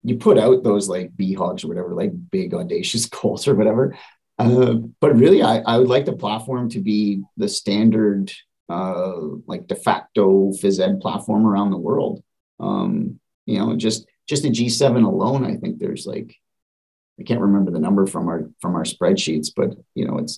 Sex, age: male, 30-49